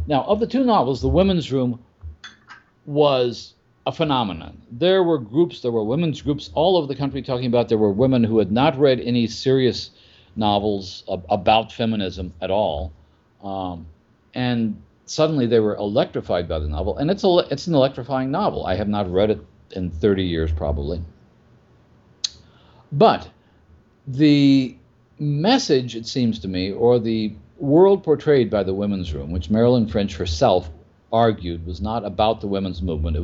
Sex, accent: male, American